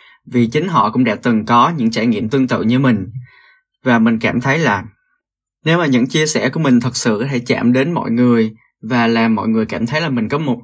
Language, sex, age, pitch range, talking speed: Vietnamese, male, 20-39, 110-145 Hz, 250 wpm